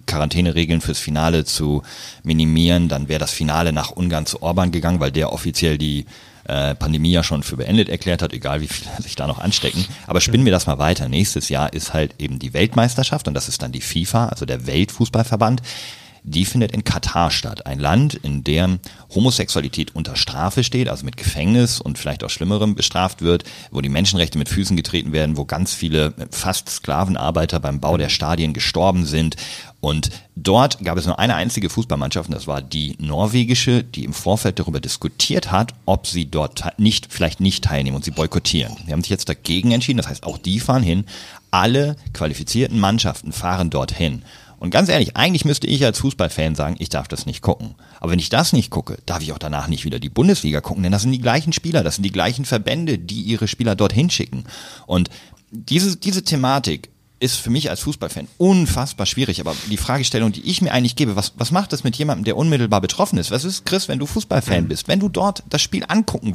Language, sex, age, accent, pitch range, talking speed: German, male, 40-59, German, 80-120 Hz, 205 wpm